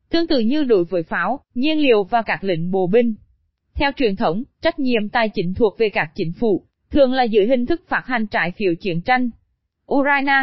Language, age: Vietnamese, 20-39